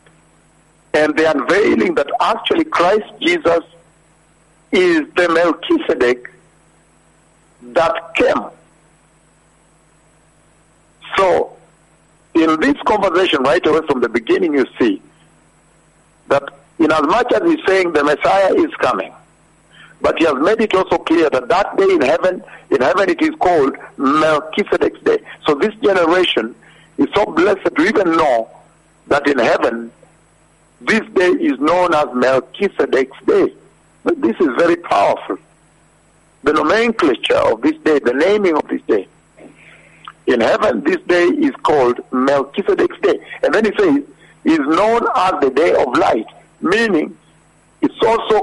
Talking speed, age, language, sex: 135 wpm, 60-79, English, male